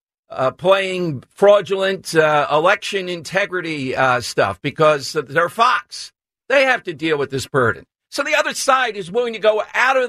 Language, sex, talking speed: English, male, 165 wpm